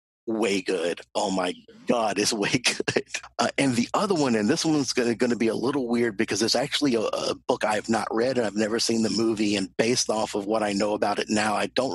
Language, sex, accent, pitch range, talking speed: English, male, American, 105-120 Hz, 245 wpm